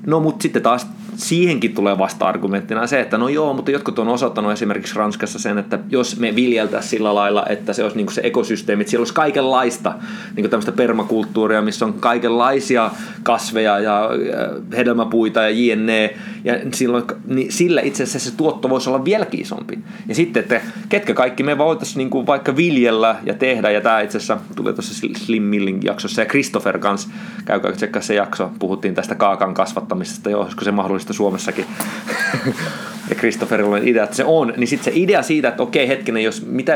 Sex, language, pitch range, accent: male, Finnish, 105-175 Hz, native